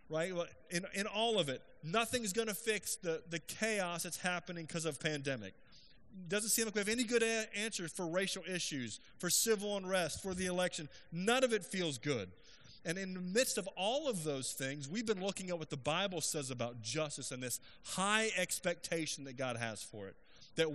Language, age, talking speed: English, 30-49, 205 wpm